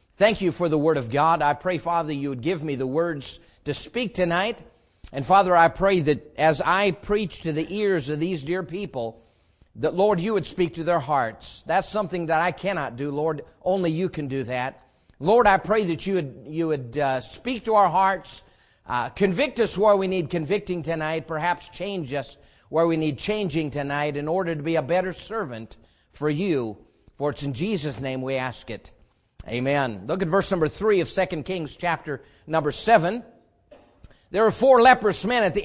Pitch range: 150-210 Hz